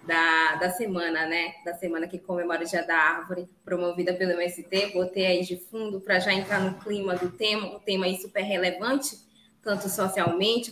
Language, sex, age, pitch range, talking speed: Portuguese, female, 20-39, 180-220 Hz, 185 wpm